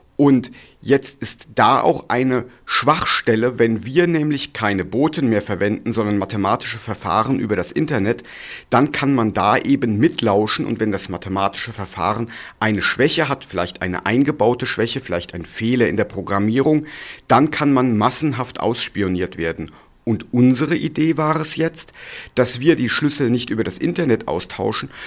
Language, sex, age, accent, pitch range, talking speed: German, male, 50-69, German, 110-150 Hz, 155 wpm